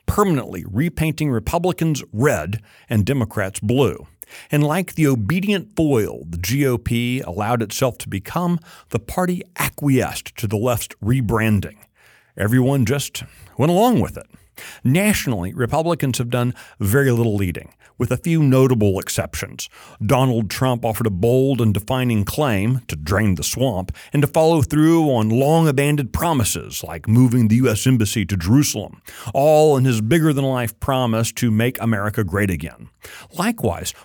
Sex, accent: male, American